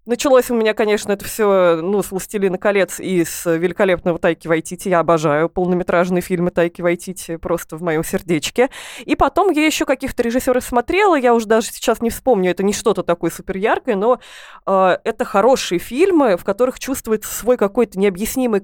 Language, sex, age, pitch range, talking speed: Russian, female, 20-39, 185-235 Hz, 175 wpm